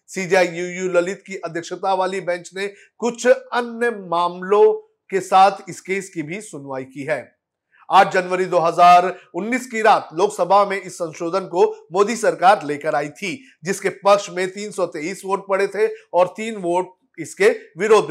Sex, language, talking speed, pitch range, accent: male, Hindi, 115 wpm, 170-210 Hz, native